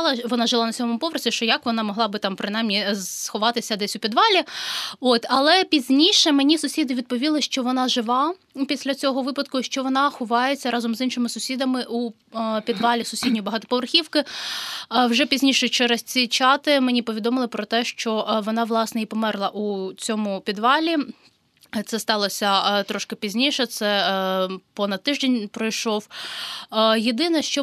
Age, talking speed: 20-39, 145 wpm